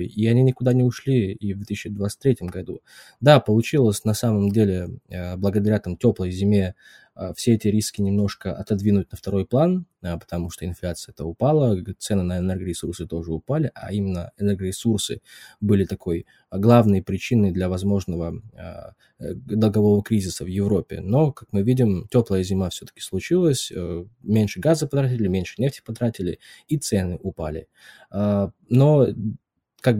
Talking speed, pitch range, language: 135 wpm, 95-120 Hz, Russian